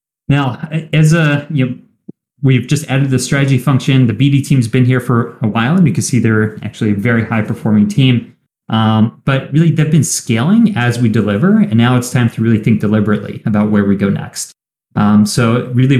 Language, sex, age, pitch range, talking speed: English, male, 30-49, 110-140 Hz, 205 wpm